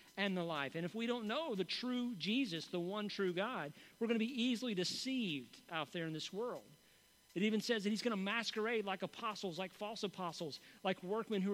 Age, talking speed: 40-59, 220 wpm